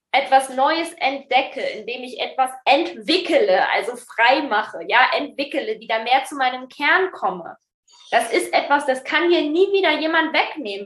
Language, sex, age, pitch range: German, female, 20-39, 215-315 Hz